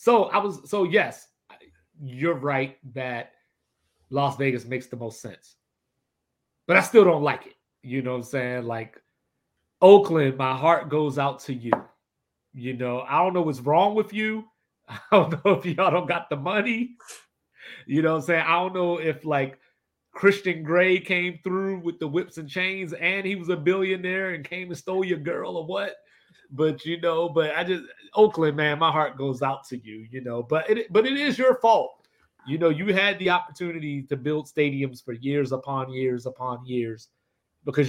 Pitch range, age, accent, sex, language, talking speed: 130-180 Hz, 30-49, American, male, English, 195 wpm